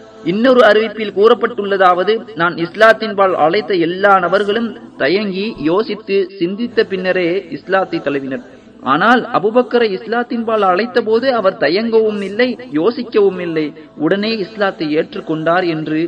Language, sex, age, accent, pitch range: Tamil, male, 30-49, native, 165-215 Hz